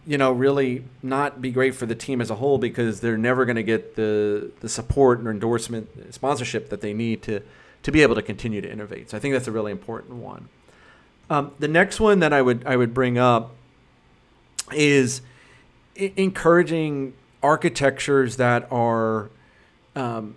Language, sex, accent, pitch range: English, male, American, 120-140 Hz